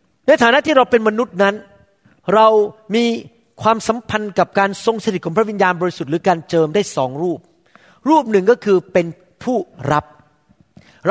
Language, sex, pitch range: Thai, male, 170-225 Hz